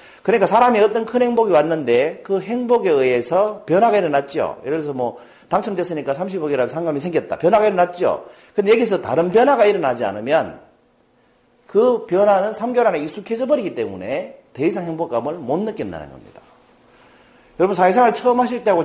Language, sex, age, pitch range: Korean, male, 40-59, 155-230 Hz